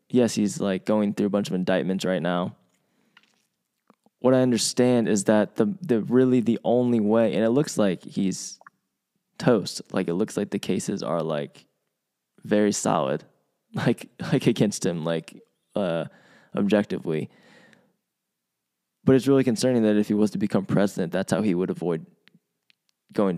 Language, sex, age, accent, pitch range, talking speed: English, male, 20-39, American, 95-125 Hz, 160 wpm